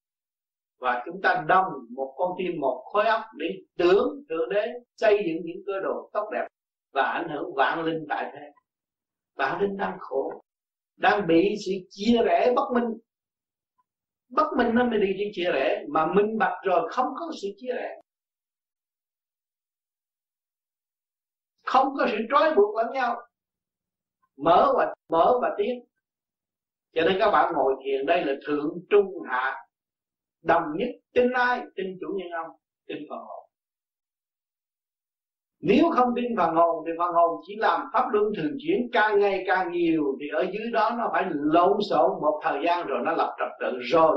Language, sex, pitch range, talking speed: Vietnamese, male, 175-245 Hz, 165 wpm